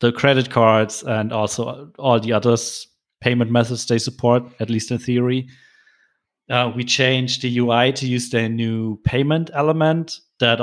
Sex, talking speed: male, 160 wpm